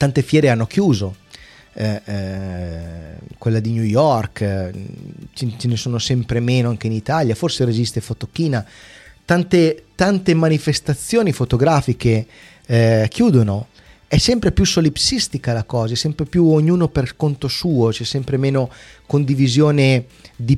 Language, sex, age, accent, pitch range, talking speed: Italian, male, 30-49, native, 115-145 Hz, 135 wpm